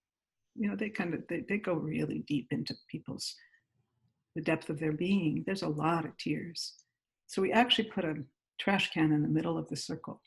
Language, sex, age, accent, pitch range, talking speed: English, female, 60-79, American, 160-215 Hz, 200 wpm